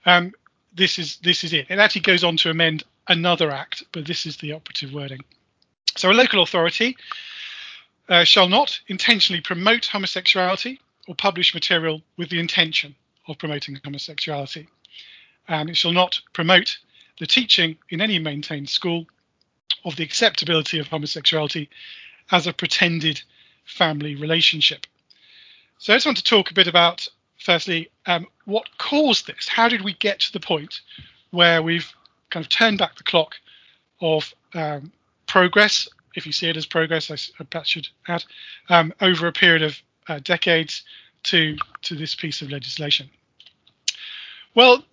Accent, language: British, English